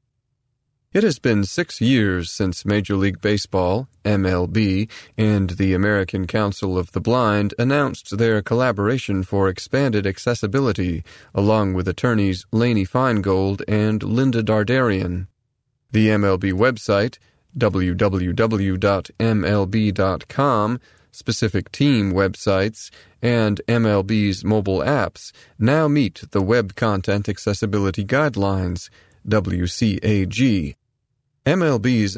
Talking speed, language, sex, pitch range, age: 95 wpm, English, male, 100-120 Hz, 30-49